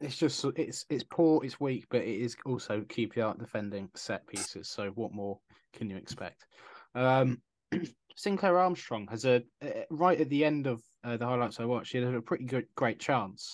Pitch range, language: 115-135 Hz, English